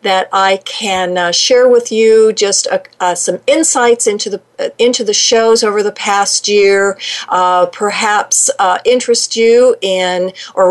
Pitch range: 185-250 Hz